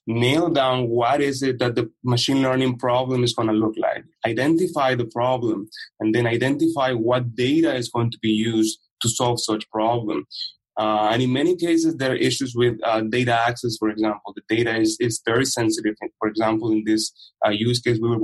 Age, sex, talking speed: 20-39, male, 200 wpm